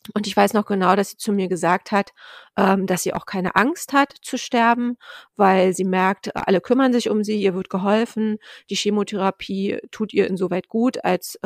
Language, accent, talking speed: German, German, 195 wpm